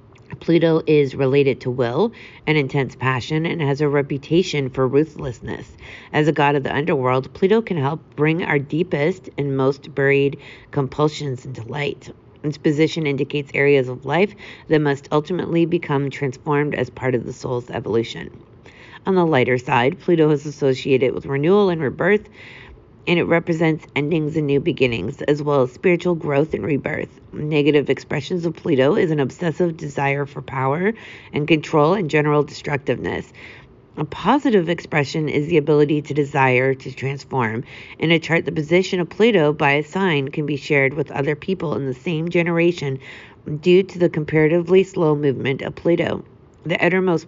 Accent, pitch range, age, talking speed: American, 135-170 Hz, 40-59, 165 wpm